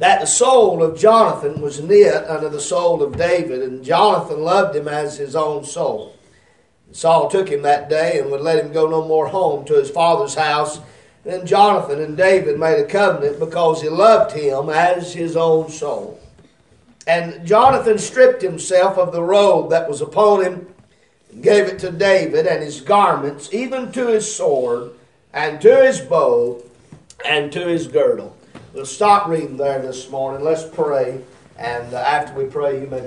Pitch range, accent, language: 155-215 Hz, American, English